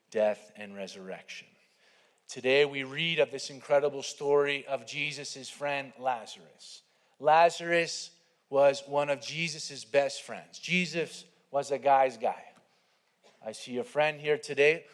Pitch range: 135-170 Hz